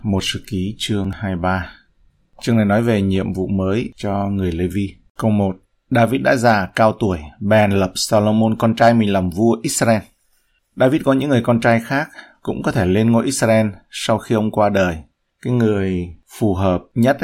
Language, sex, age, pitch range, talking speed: Vietnamese, male, 20-39, 100-115 Hz, 190 wpm